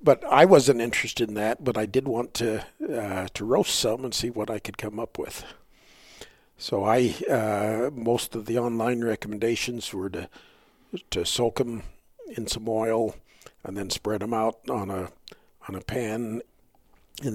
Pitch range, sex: 105-125 Hz, male